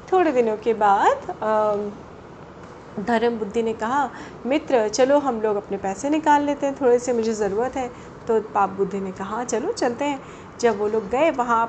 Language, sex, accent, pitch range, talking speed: Hindi, female, native, 210-280 Hz, 175 wpm